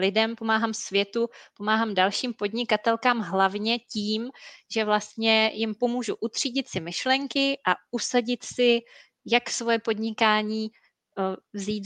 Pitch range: 195-220 Hz